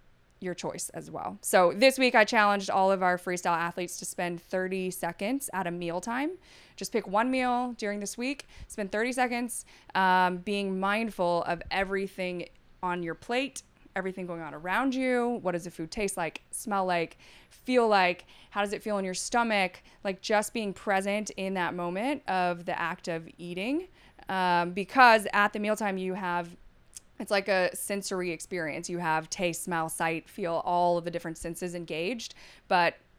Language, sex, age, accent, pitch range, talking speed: English, female, 20-39, American, 170-200 Hz, 175 wpm